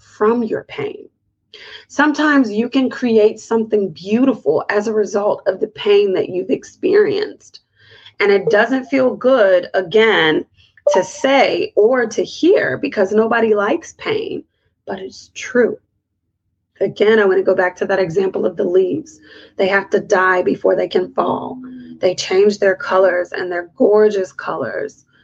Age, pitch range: 30-49, 190-285 Hz